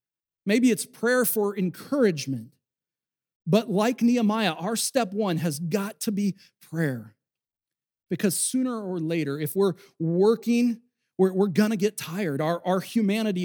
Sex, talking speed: male, 140 wpm